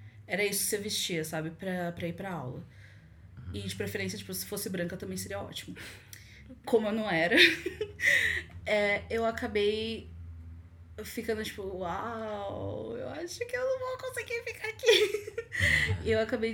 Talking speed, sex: 150 wpm, female